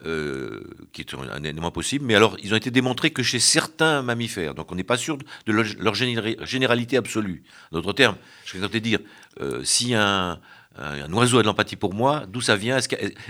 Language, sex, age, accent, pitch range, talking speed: French, male, 50-69, French, 105-150 Hz, 210 wpm